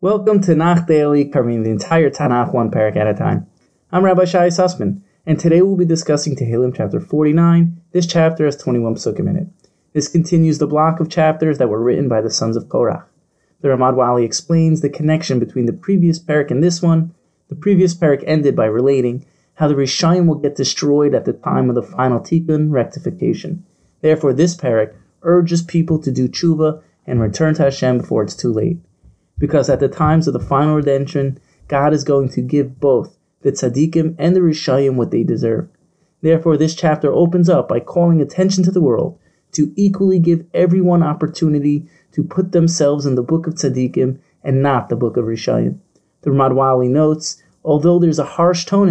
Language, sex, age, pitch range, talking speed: English, male, 20-39, 140-170 Hz, 190 wpm